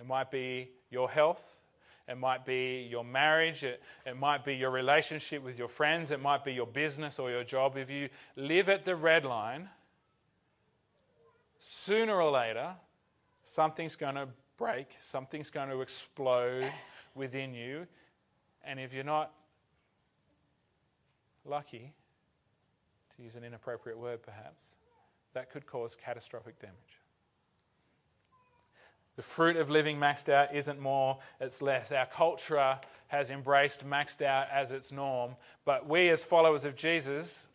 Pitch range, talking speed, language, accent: 130-160 Hz, 140 wpm, English, Australian